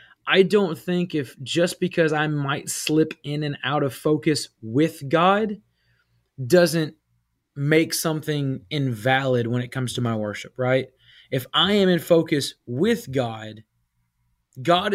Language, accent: English, American